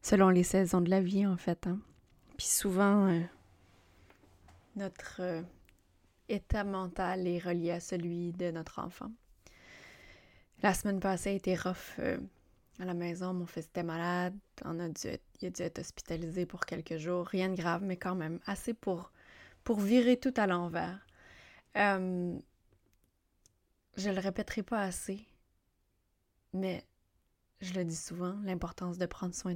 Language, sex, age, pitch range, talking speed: French, female, 20-39, 170-195 Hz, 155 wpm